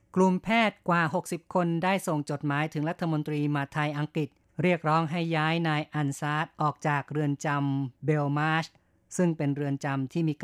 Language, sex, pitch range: Thai, female, 140-160 Hz